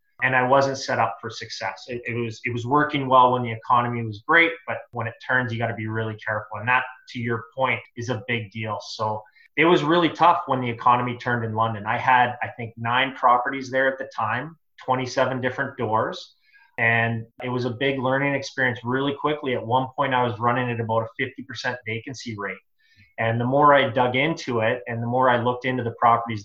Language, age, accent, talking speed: English, 20-39, American, 220 wpm